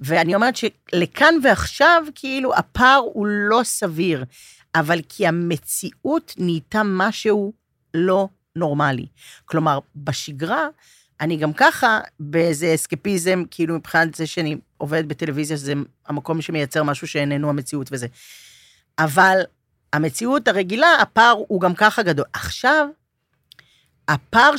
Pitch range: 150-210 Hz